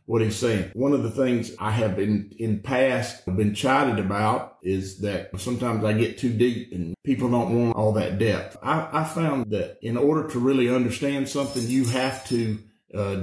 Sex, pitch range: male, 105-130 Hz